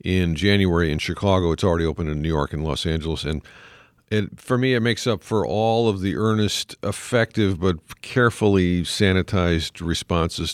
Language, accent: English, American